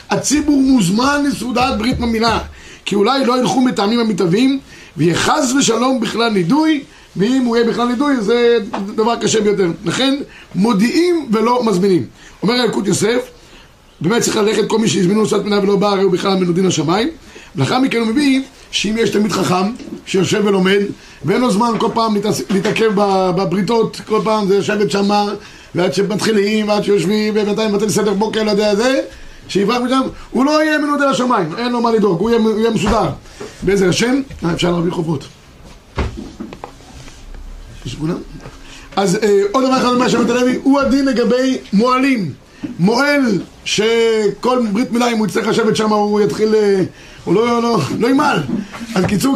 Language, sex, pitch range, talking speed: Hebrew, male, 200-245 Hz, 155 wpm